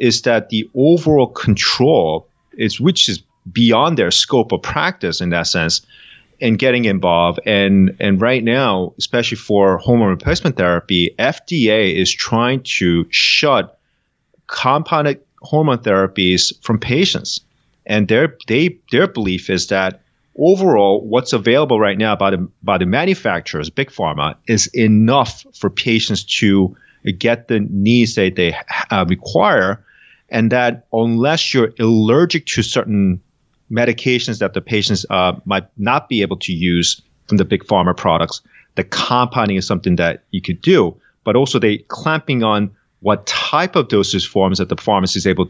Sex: male